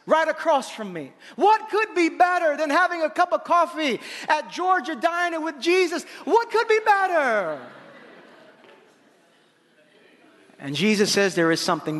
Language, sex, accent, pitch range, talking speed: English, male, American, 185-310 Hz, 145 wpm